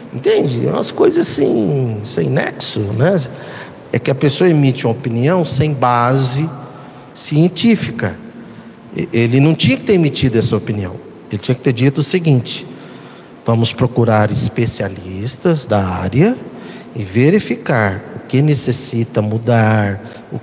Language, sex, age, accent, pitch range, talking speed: Portuguese, male, 50-69, Brazilian, 115-165 Hz, 130 wpm